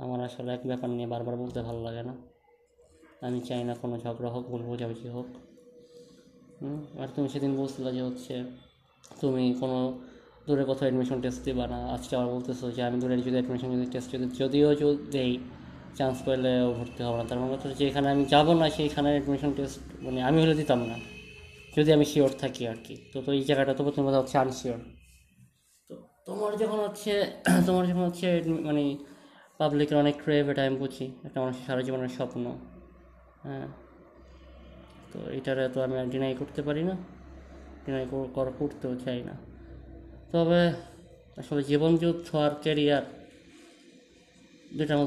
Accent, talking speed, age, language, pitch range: native, 135 wpm, 20-39, Bengali, 125-145 Hz